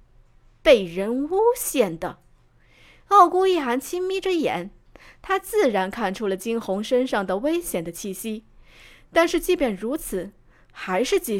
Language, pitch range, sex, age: Chinese, 190-285 Hz, female, 20-39